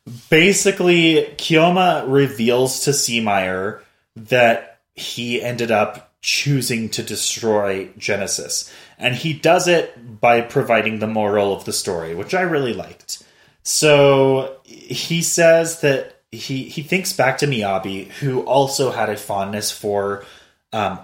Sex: male